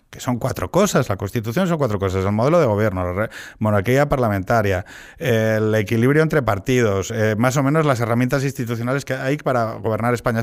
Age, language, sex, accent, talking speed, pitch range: 30-49, Spanish, male, Spanish, 185 wpm, 105-145 Hz